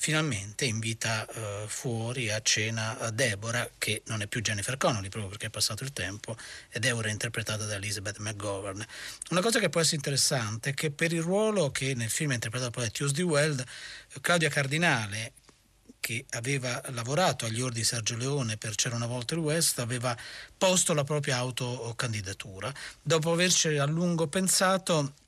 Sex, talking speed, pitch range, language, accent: male, 175 wpm, 110-145 Hz, Italian, native